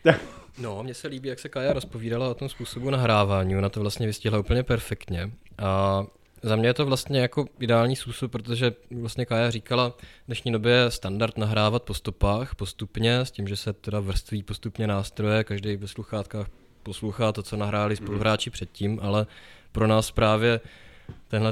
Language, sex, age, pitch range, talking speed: Czech, male, 20-39, 105-120 Hz, 175 wpm